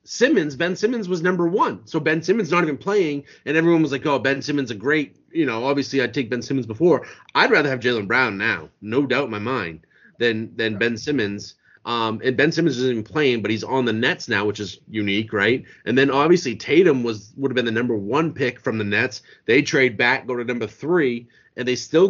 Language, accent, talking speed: English, American, 235 wpm